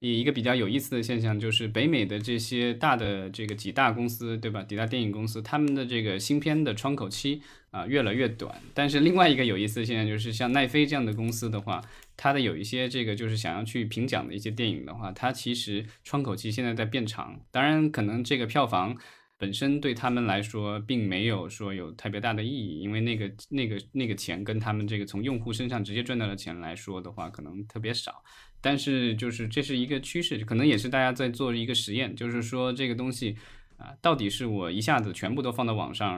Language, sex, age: Chinese, male, 20-39